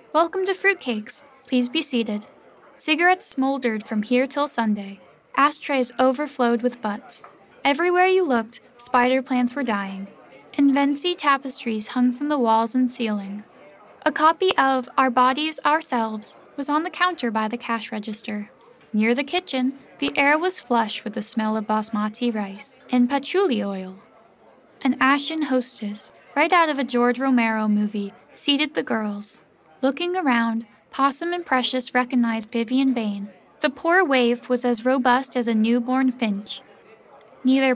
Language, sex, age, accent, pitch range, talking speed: English, female, 10-29, American, 225-290 Hz, 150 wpm